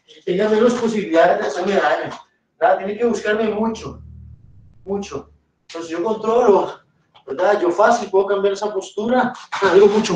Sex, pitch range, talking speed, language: male, 165-215 Hz, 140 wpm, Spanish